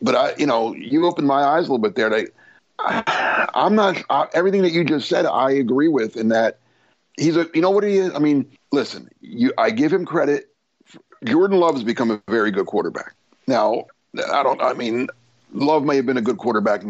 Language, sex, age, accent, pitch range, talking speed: English, male, 50-69, American, 120-170 Hz, 235 wpm